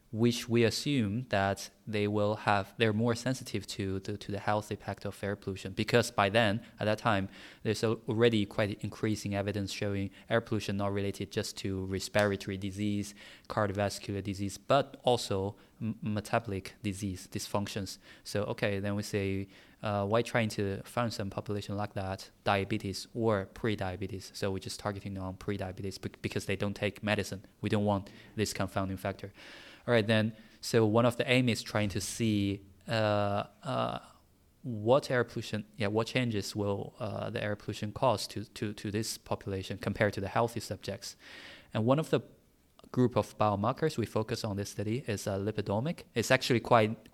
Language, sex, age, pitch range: English, male, 20-39, 100-115 Hz